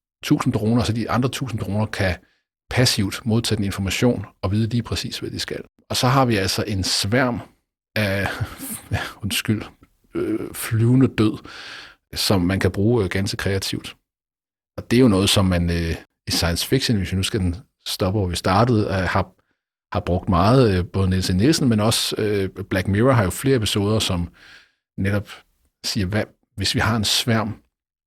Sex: male